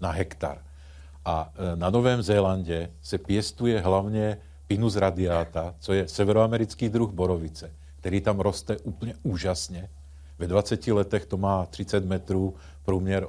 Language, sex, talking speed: Czech, male, 130 wpm